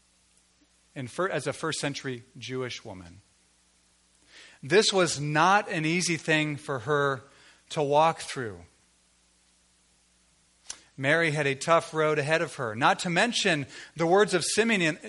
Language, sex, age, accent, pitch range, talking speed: English, male, 40-59, American, 115-185 Hz, 135 wpm